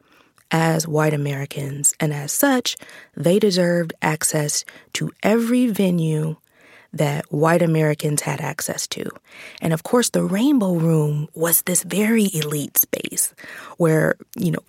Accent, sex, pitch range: American, female, 160-215 Hz